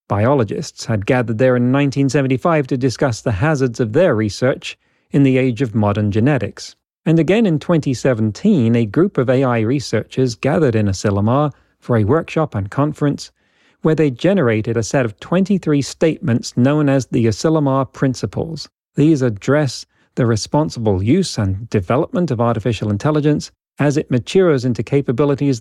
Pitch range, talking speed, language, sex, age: 115-150 Hz, 150 wpm, English, male, 40-59